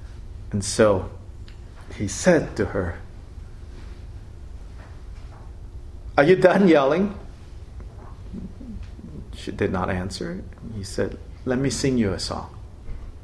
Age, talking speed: 50-69, 100 wpm